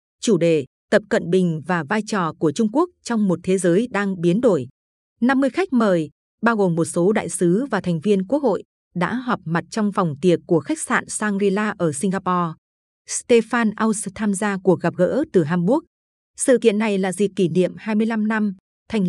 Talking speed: 200 wpm